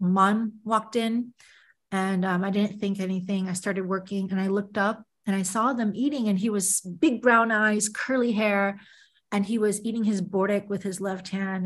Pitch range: 200-250 Hz